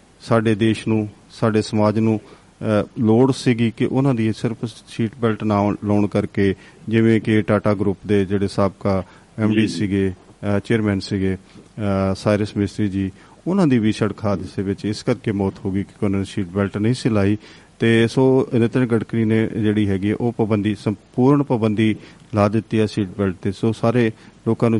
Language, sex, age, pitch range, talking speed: Punjabi, male, 40-59, 105-120 Hz, 170 wpm